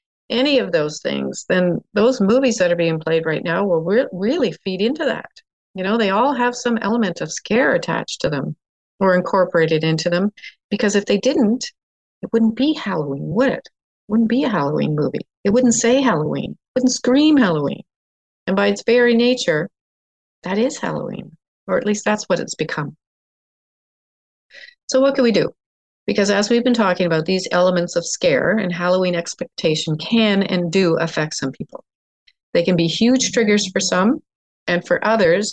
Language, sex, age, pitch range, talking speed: English, female, 50-69, 175-245 Hz, 180 wpm